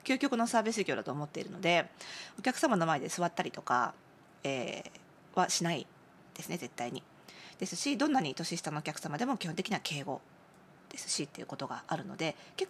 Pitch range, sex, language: 165-265 Hz, female, Japanese